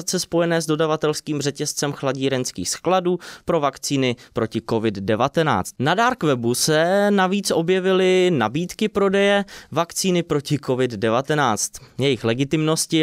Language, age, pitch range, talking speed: Czech, 20-39, 125-180 Hz, 100 wpm